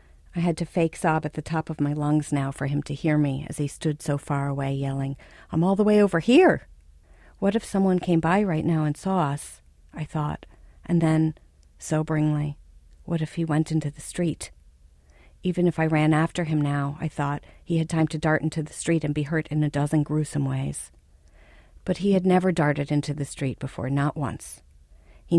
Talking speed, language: 210 wpm, English